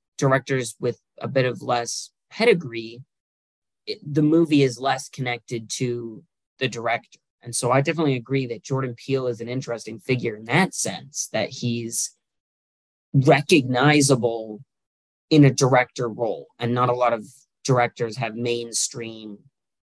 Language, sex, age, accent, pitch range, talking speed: English, male, 20-39, American, 115-140 Hz, 135 wpm